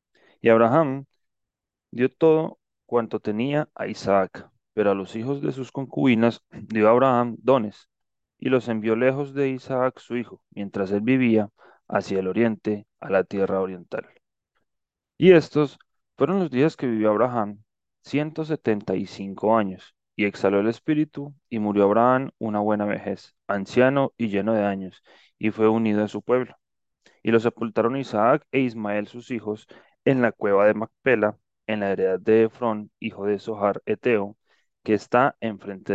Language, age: Spanish, 30-49